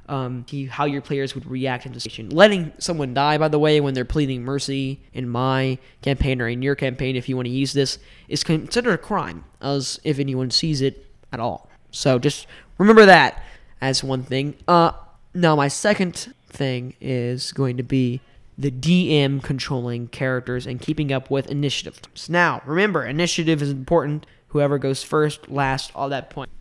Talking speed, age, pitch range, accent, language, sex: 180 wpm, 10-29, 130-155 Hz, American, English, male